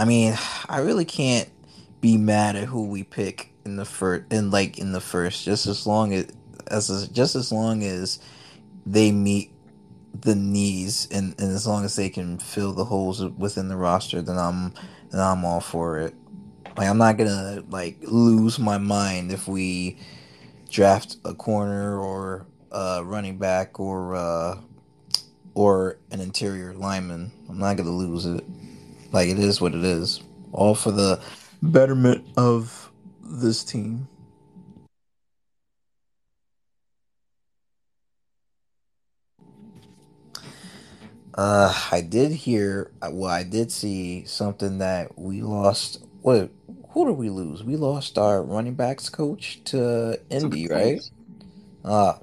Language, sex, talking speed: English, male, 140 wpm